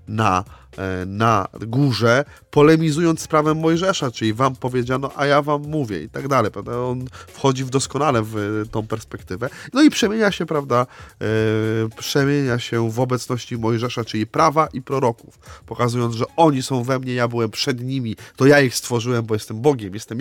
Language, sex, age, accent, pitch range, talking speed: Polish, male, 30-49, native, 115-165 Hz, 180 wpm